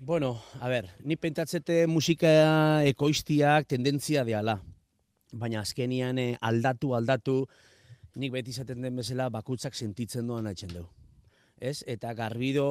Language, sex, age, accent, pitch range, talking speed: Spanish, male, 30-49, Spanish, 115-130 Hz, 130 wpm